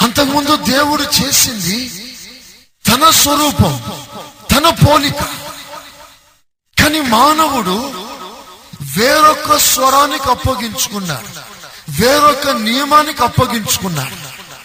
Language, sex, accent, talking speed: Telugu, male, native, 60 wpm